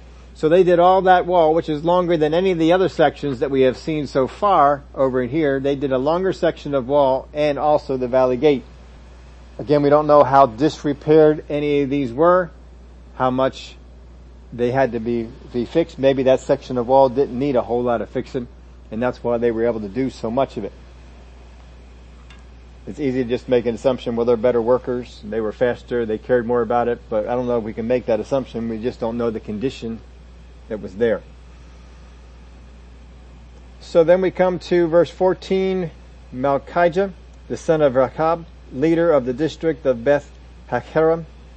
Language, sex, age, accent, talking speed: English, male, 40-59, American, 195 wpm